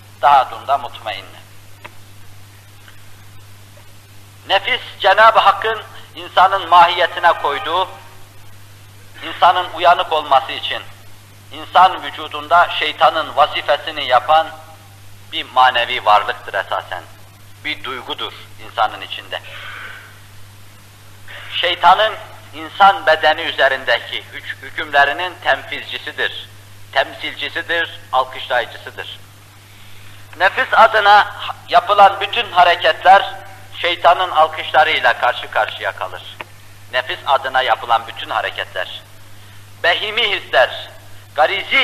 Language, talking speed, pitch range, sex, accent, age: Turkish, 75 wpm, 100-160 Hz, male, native, 50-69